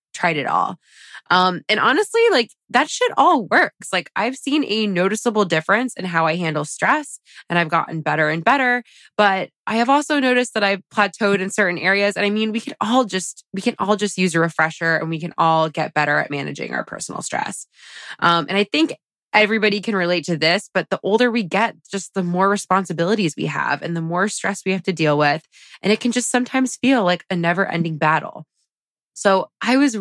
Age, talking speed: 20-39, 215 wpm